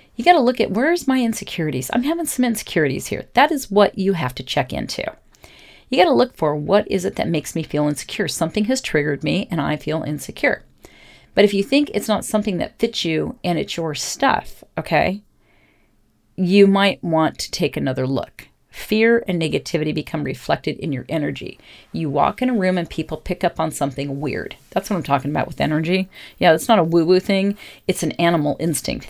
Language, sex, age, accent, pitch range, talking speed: English, female, 40-59, American, 155-215 Hz, 210 wpm